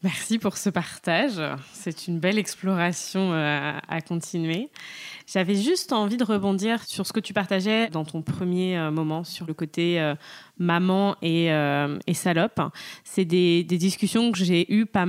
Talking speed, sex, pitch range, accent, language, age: 165 wpm, female, 170-205 Hz, French, French, 20-39